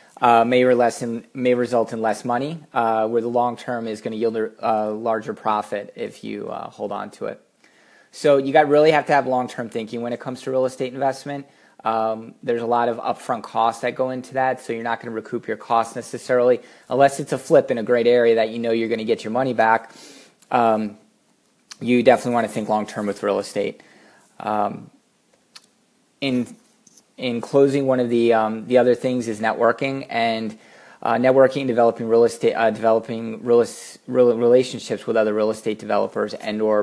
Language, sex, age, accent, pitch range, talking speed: English, male, 20-39, American, 115-125 Hz, 210 wpm